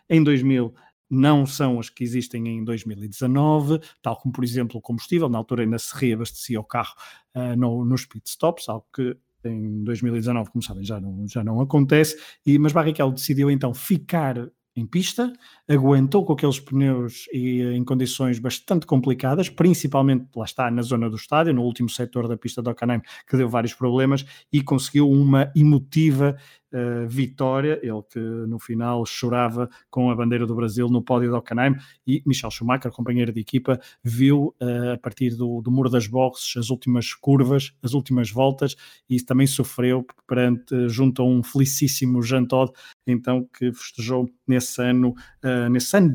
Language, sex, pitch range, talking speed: Portuguese, male, 120-135 Hz, 160 wpm